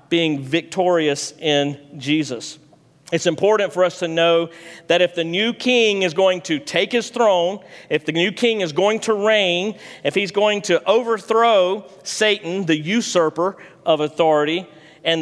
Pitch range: 155-195 Hz